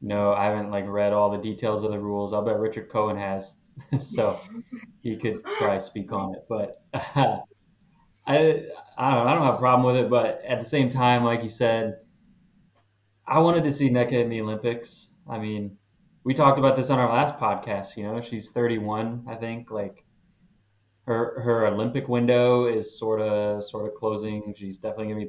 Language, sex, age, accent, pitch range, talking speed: English, male, 20-39, American, 105-130 Hz, 195 wpm